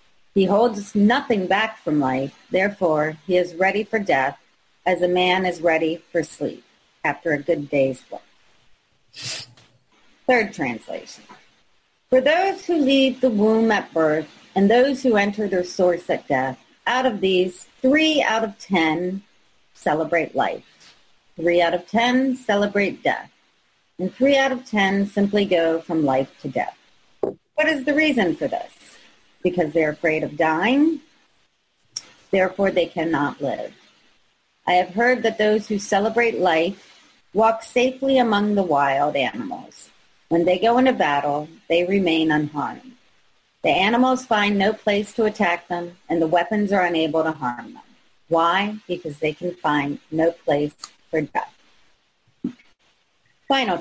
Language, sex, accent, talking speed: English, female, American, 145 wpm